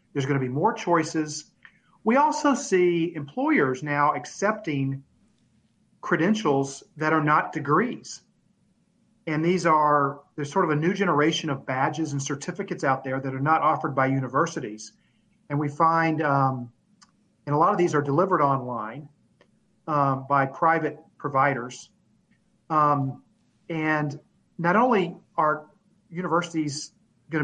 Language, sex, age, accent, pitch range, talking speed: English, male, 40-59, American, 140-180 Hz, 135 wpm